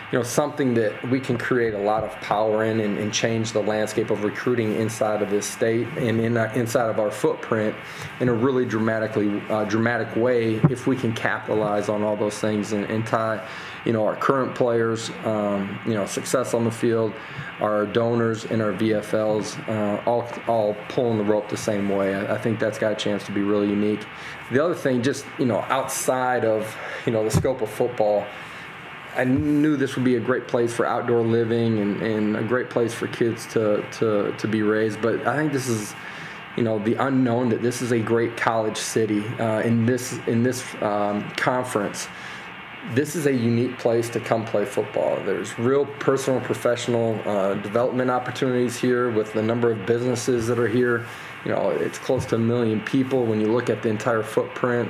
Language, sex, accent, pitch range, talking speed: English, male, American, 110-125 Hz, 200 wpm